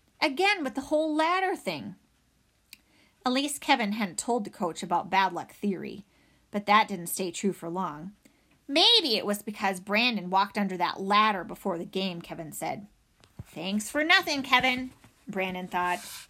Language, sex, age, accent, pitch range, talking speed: English, female, 30-49, American, 200-300 Hz, 160 wpm